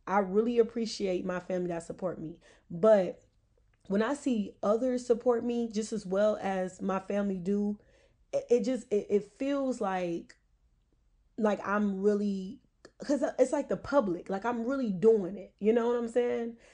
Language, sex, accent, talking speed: English, female, American, 170 wpm